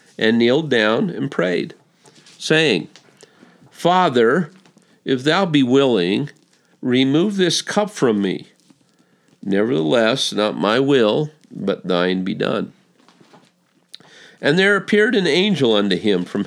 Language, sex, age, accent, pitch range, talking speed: English, male, 50-69, American, 90-120 Hz, 115 wpm